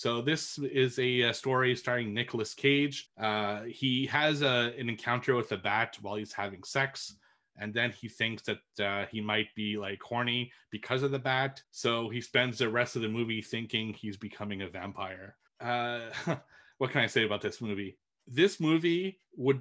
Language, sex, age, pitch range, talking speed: English, male, 30-49, 110-135 Hz, 180 wpm